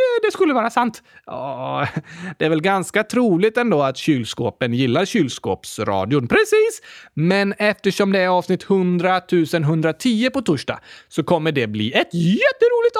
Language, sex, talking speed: Swedish, male, 140 wpm